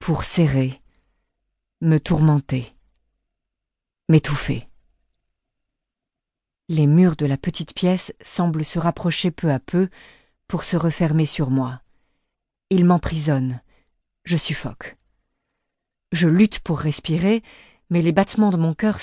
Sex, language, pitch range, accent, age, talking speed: female, French, 150-190 Hz, French, 50-69, 115 wpm